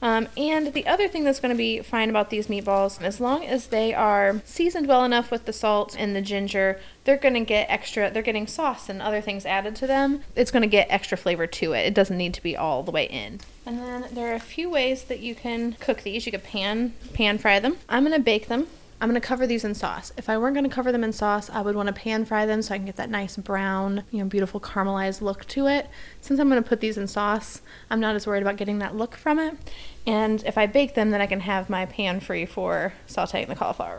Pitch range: 205-250 Hz